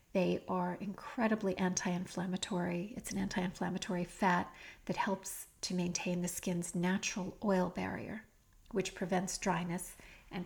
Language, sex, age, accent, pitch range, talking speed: English, female, 40-59, American, 175-200 Hz, 120 wpm